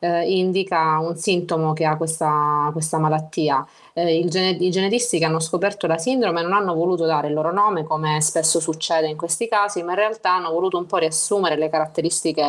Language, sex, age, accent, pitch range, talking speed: Italian, female, 20-39, native, 155-180 Hz, 200 wpm